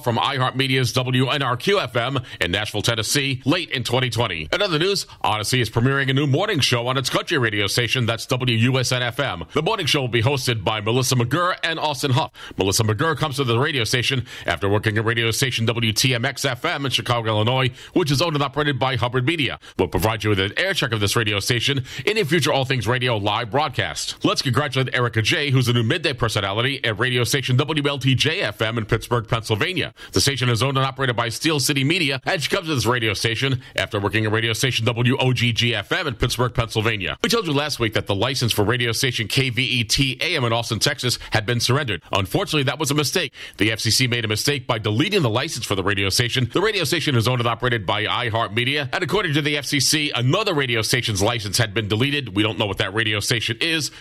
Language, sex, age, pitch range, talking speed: English, male, 40-59, 115-140 Hz, 210 wpm